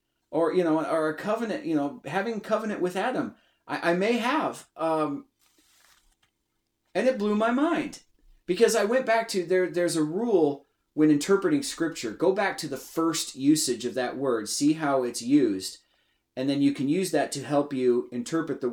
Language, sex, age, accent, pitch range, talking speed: English, male, 30-49, American, 145-235 Hz, 185 wpm